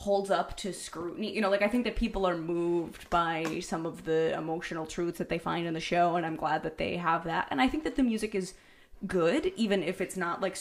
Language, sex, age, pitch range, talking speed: English, female, 20-39, 175-240 Hz, 255 wpm